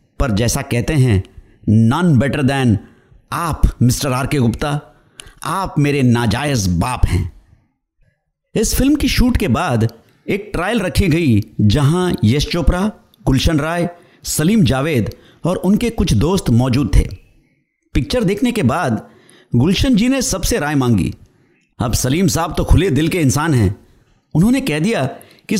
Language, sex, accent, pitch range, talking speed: Hindi, male, native, 120-195 Hz, 145 wpm